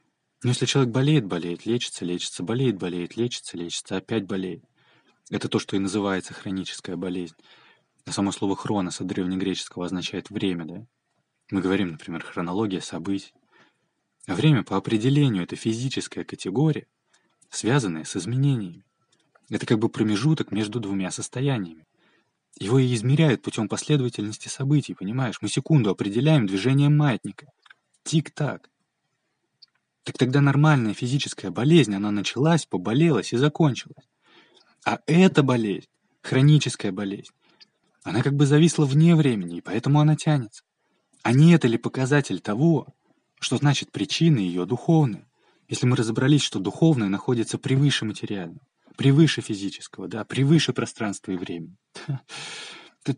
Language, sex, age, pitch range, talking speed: Russian, male, 20-39, 100-145 Hz, 130 wpm